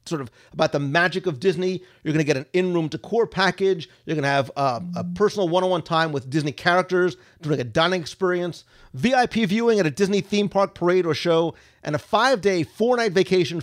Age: 40-59